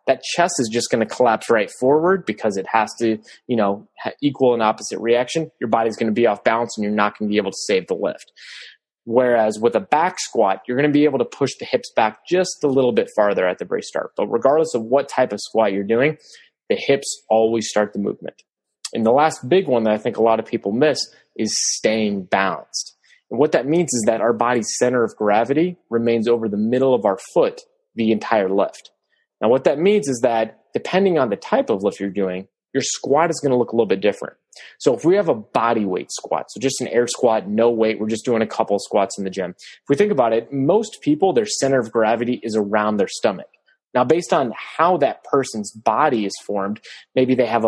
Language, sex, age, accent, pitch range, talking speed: English, male, 20-39, American, 110-140 Hz, 240 wpm